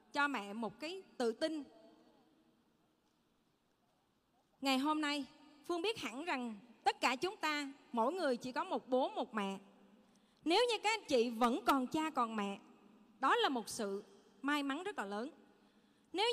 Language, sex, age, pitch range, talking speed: Vietnamese, female, 20-39, 235-325 Hz, 165 wpm